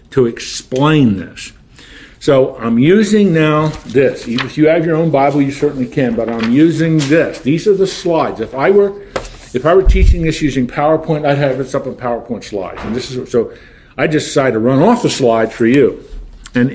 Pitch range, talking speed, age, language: 120-170 Hz, 205 wpm, 50-69, English